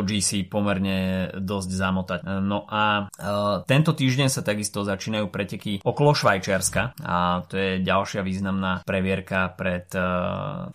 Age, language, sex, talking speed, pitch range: 20-39, Slovak, male, 130 wpm, 95-110 Hz